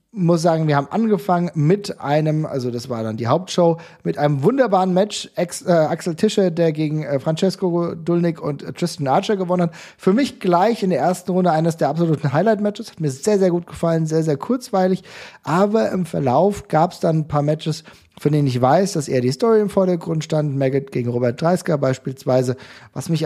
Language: German